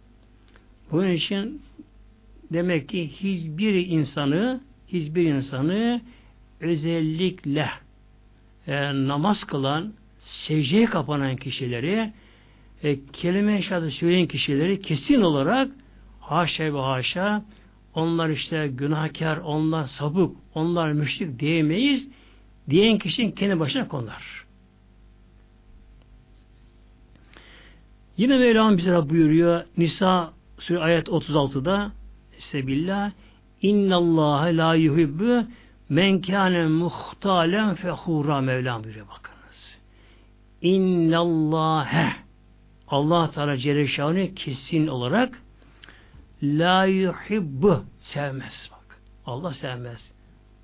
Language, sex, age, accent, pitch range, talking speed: Turkish, male, 60-79, native, 125-180 Hz, 80 wpm